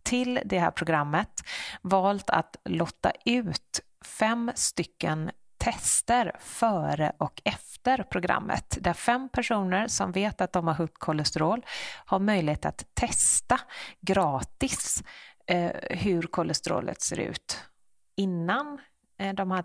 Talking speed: 115 wpm